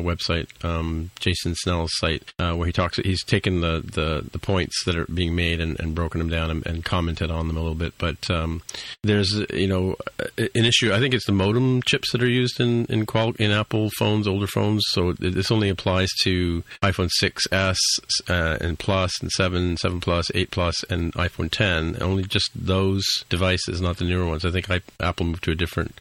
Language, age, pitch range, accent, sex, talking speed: English, 40-59, 85-100 Hz, American, male, 210 wpm